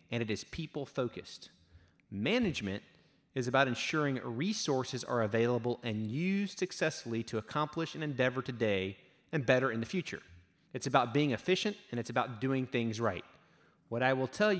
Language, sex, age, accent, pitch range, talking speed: English, male, 30-49, American, 115-160 Hz, 155 wpm